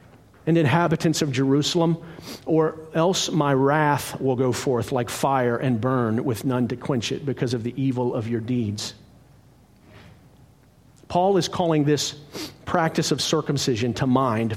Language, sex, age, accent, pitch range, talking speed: English, male, 40-59, American, 125-165 Hz, 150 wpm